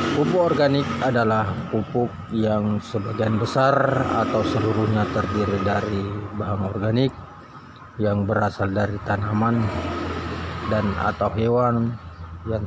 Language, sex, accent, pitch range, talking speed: Indonesian, male, native, 105-125 Hz, 100 wpm